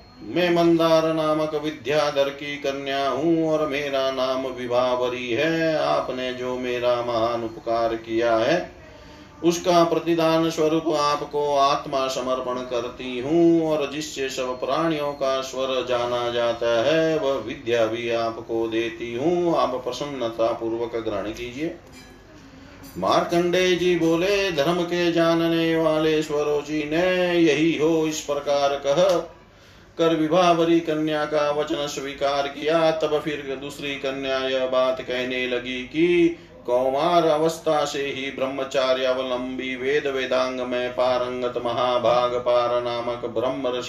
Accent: native